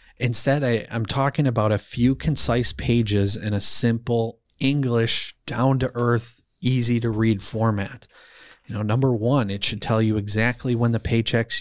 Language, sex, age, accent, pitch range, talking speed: English, male, 30-49, American, 110-130 Hz, 145 wpm